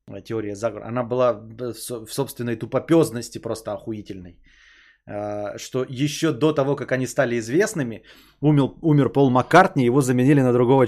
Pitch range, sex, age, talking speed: 125-155 Hz, male, 20-39, 125 wpm